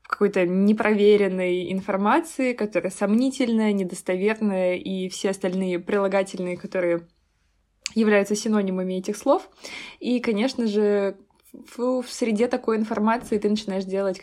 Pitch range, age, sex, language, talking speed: 185-220 Hz, 20-39, female, Russian, 105 wpm